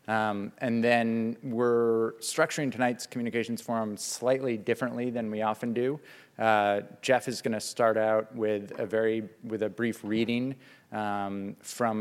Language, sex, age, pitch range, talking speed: English, male, 20-39, 105-115 Hz, 150 wpm